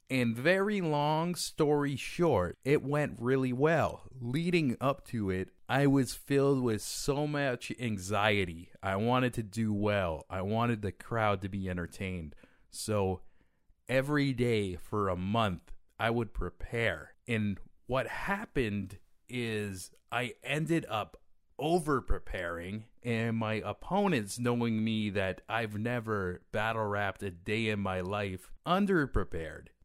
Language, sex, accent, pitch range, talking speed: English, male, American, 95-140 Hz, 130 wpm